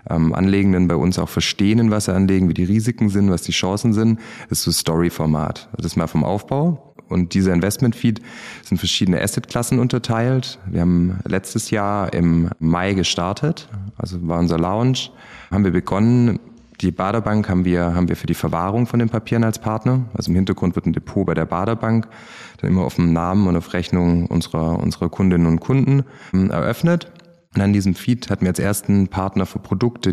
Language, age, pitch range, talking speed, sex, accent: German, 30-49, 90-115 Hz, 185 wpm, male, German